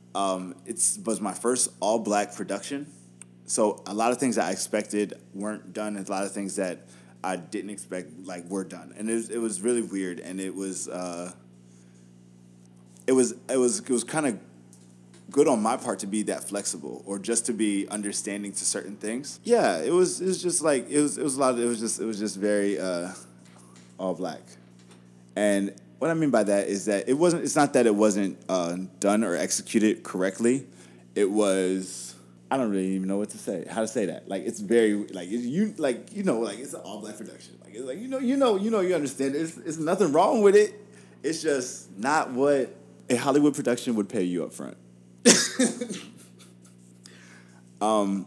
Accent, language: American, English